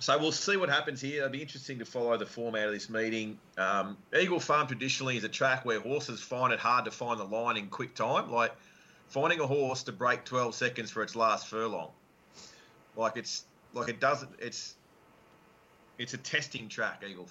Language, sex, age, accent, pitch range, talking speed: English, male, 30-49, Australian, 100-125 Hz, 200 wpm